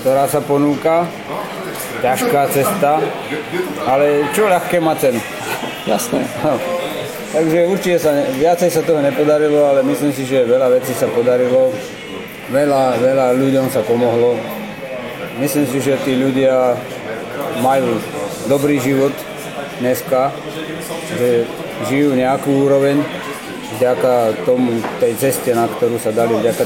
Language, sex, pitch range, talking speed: Slovak, male, 130-155 Hz, 120 wpm